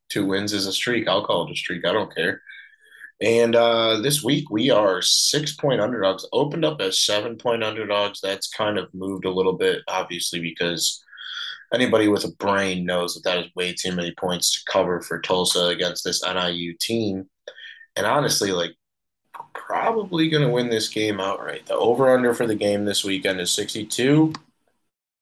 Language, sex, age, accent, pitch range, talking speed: English, male, 20-39, American, 95-120 Hz, 175 wpm